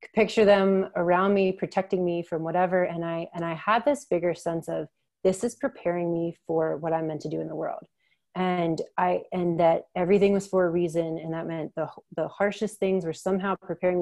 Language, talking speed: English, 210 wpm